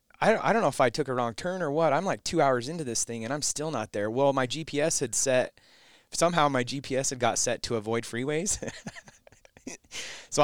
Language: English